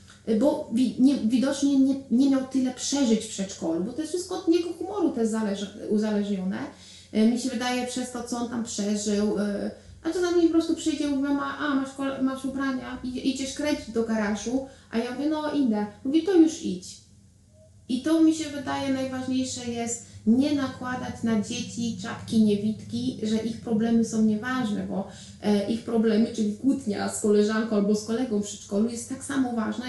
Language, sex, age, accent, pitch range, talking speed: Polish, female, 30-49, native, 210-265 Hz, 175 wpm